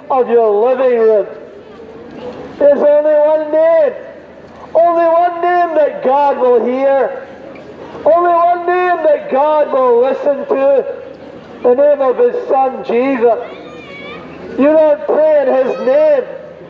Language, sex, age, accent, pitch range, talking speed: English, male, 50-69, American, 280-335 Hz, 130 wpm